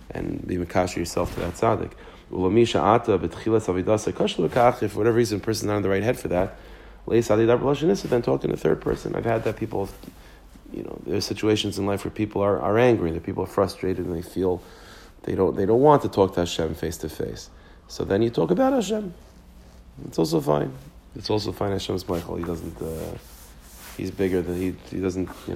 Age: 40-59